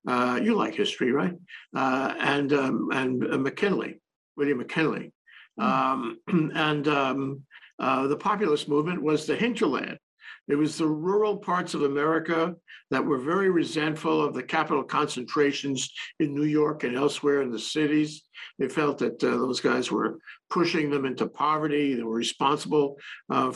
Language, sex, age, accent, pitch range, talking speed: English, male, 60-79, American, 140-170 Hz, 155 wpm